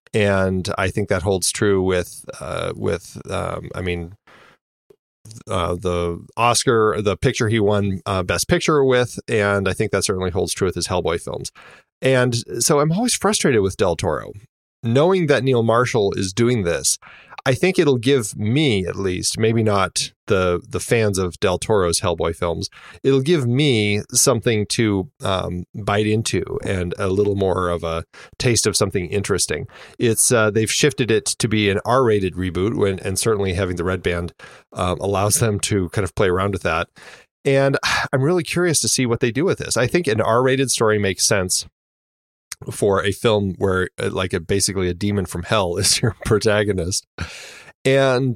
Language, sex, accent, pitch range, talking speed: English, male, American, 95-120 Hz, 180 wpm